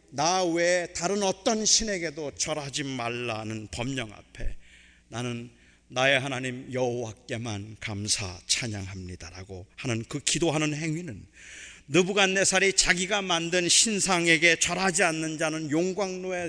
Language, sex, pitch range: Korean, male, 125-205 Hz